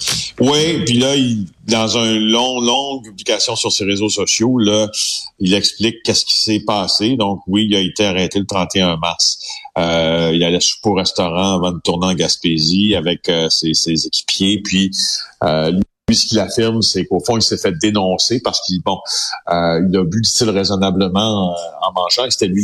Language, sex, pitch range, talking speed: French, male, 90-115 Hz, 200 wpm